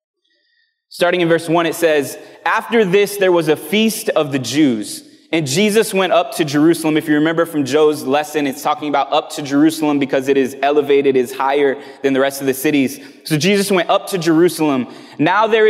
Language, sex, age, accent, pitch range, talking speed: English, male, 20-39, American, 150-200 Hz, 205 wpm